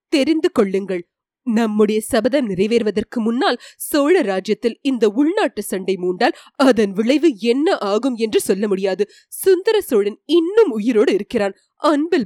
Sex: female